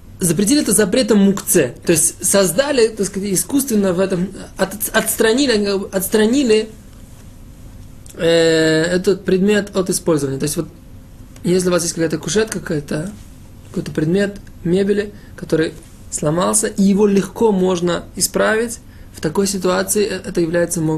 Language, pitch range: Russian, 160-205 Hz